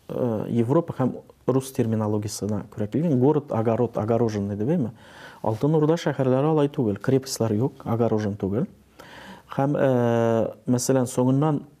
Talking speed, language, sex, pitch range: 115 wpm, English, male, 110-140 Hz